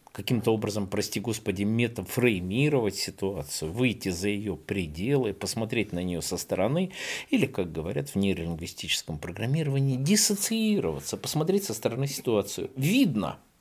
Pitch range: 95-135 Hz